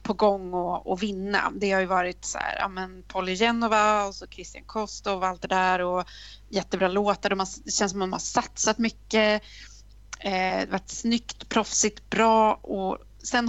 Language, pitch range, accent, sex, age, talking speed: Swedish, 190-245 Hz, native, female, 30-49, 195 wpm